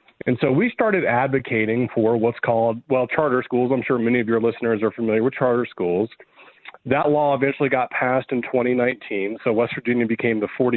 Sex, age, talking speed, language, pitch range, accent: male, 40-59, 190 wpm, English, 120-160 Hz, American